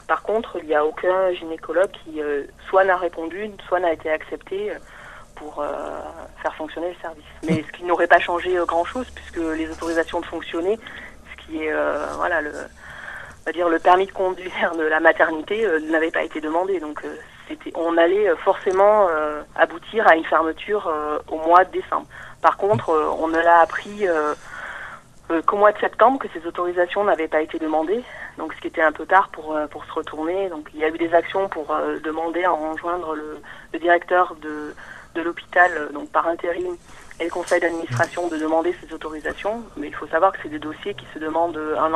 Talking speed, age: 195 wpm, 30-49